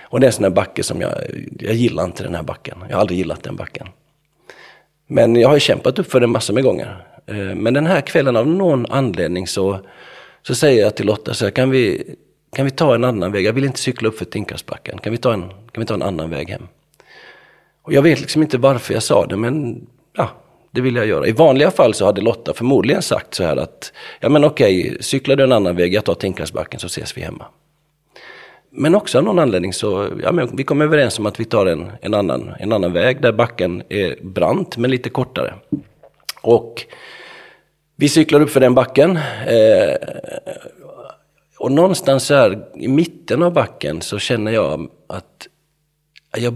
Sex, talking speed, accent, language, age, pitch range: male, 205 wpm, native, Swedish, 40-59, 110-150 Hz